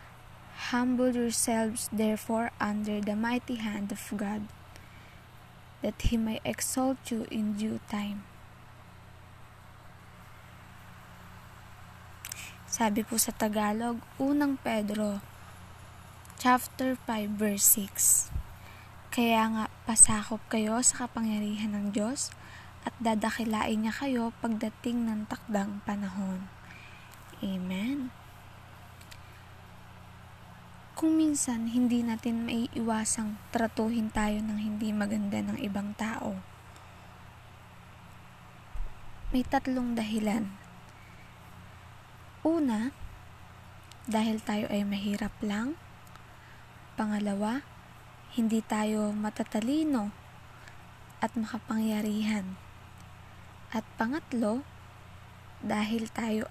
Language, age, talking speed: Filipino, 20-39, 80 wpm